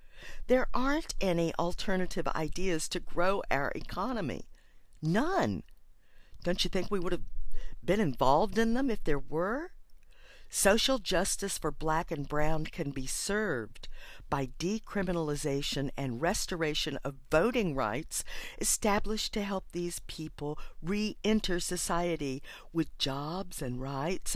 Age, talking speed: 50-69, 125 wpm